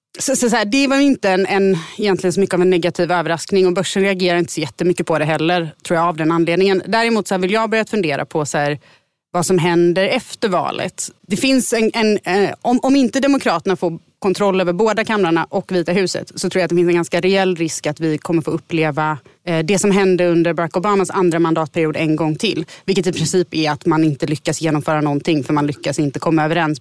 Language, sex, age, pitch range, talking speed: Swedish, female, 30-49, 160-195 Hz, 235 wpm